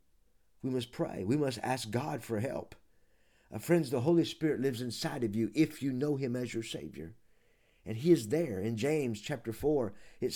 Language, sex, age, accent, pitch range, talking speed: English, male, 50-69, American, 110-150 Hz, 195 wpm